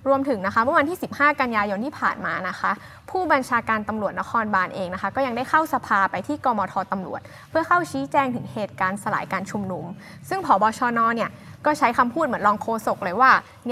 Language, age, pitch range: Thai, 20-39, 200-260 Hz